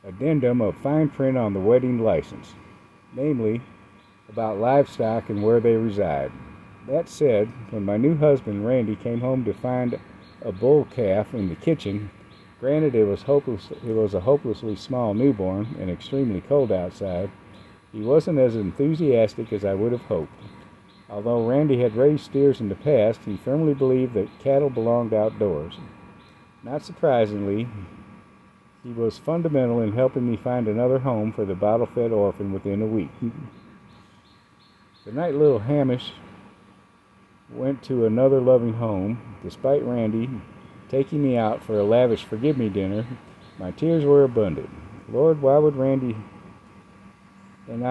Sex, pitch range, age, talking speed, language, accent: male, 105-135 Hz, 50-69, 145 wpm, English, American